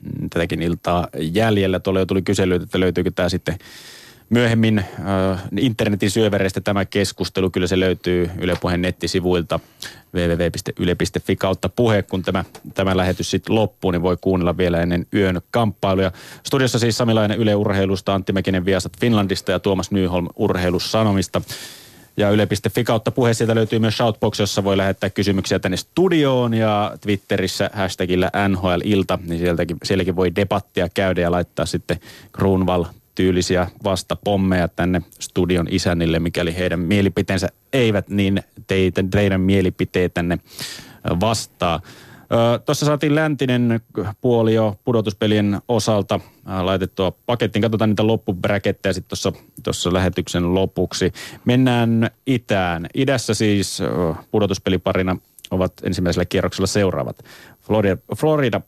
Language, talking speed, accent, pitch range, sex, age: Finnish, 120 wpm, native, 90-110 Hz, male, 30-49